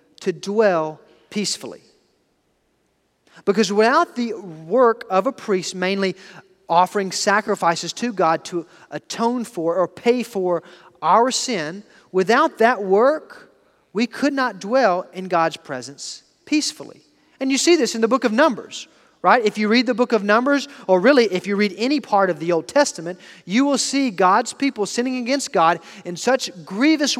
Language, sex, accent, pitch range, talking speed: English, male, American, 185-250 Hz, 160 wpm